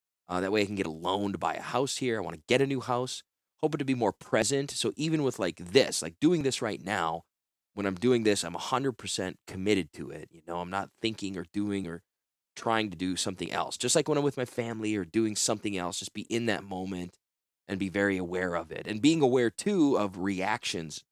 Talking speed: 245 wpm